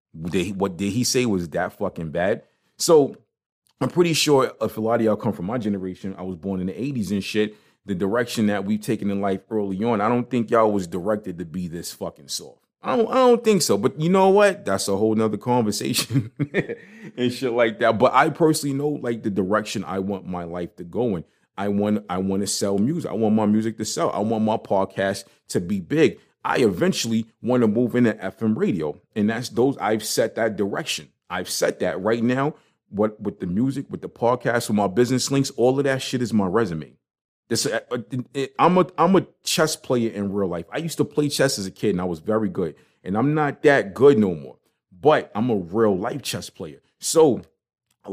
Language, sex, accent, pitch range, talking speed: English, male, American, 100-135 Hz, 220 wpm